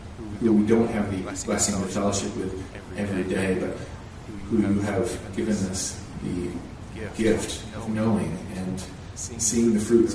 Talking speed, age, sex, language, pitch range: 155 wpm, 40-59, male, English, 90-105 Hz